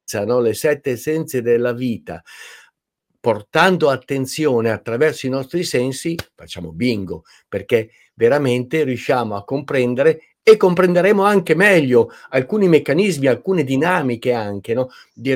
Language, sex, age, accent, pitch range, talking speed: Italian, male, 50-69, native, 120-165 Hz, 110 wpm